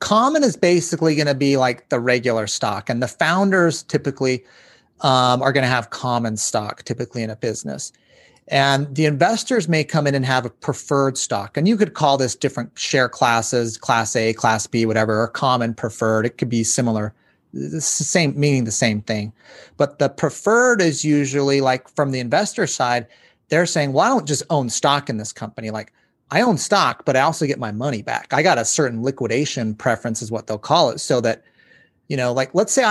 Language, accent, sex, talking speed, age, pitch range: English, American, male, 205 wpm, 30-49, 120-150 Hz